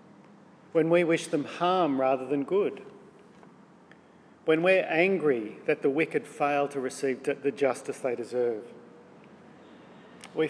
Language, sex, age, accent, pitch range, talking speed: English, male, 50-69, Australian, 140-170 Hz, 125 wpm